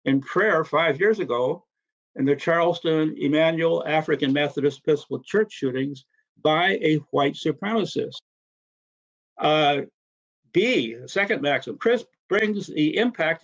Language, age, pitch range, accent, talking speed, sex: English, 60-79, 145-210 Hz, American, 120 wpm, male